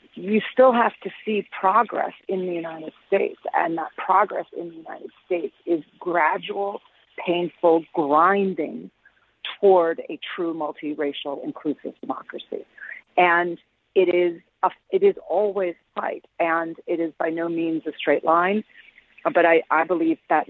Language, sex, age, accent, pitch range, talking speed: English, female, 40-59, American, 160-195 Hz, 145 wpm